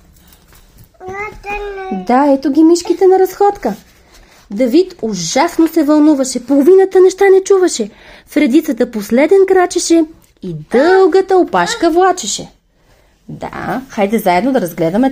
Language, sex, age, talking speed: English, female, 30-49, 105 wpm